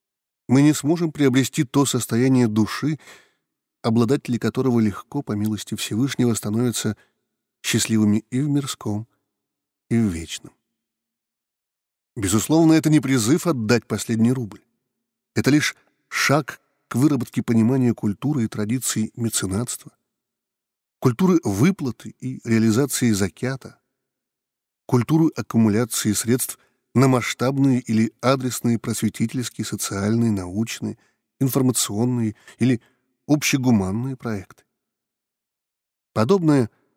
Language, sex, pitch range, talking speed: Russian, male, 110-145 Hz, 95 wpm